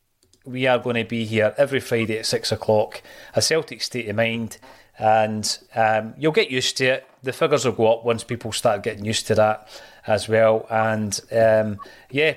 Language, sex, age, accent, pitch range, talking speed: English, male, 30-49, British, 110-135 Hz, 195 wpm